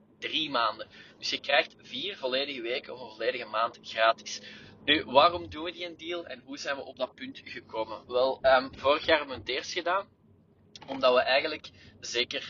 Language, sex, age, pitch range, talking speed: Dutch, male, 20-39, 125-175 Hz, 195 wpm